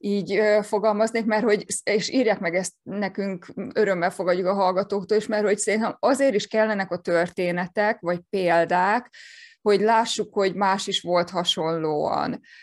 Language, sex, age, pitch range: Hungarian, female, 20-39, 175-205 Hz